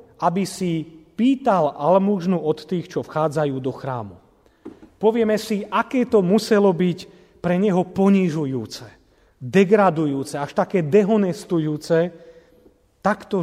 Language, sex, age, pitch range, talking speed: Slovak, male, 40-59, 170-235 Hz, 105 wpm